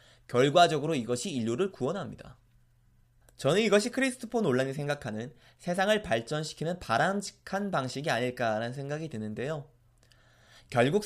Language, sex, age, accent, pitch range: Korean, male, 20-39, native, 120-195 Hz